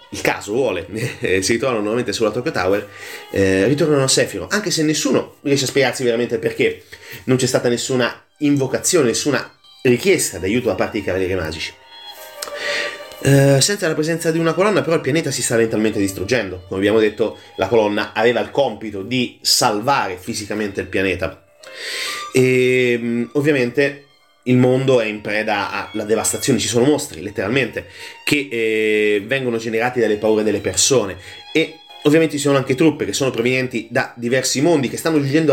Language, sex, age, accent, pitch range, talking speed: Italian, male, 30-49, native, 110-150 Hz, 165 wpm